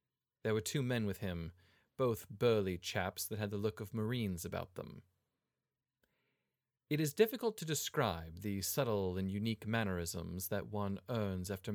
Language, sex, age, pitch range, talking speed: English, male, 30-49, 95-120 Hz, 160 wpm